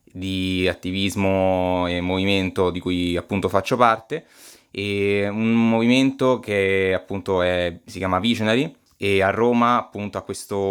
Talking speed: 130 wpm